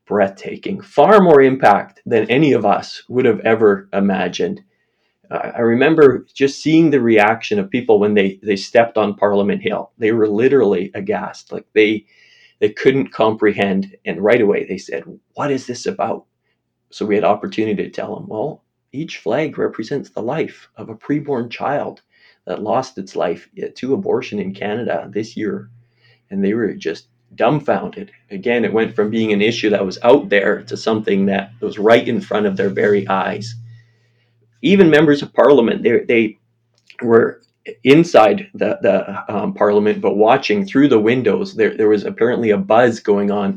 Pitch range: 105-120 Hz